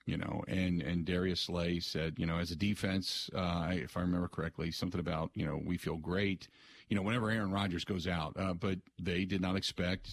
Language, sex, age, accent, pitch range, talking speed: English, male, 40-59, American, 85-115 Hz, 220 wpm